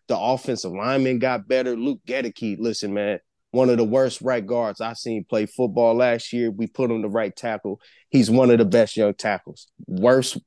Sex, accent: male, American